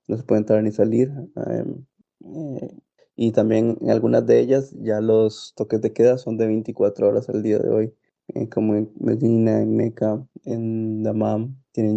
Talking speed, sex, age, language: 180 wpm, male, 20-39, Spanish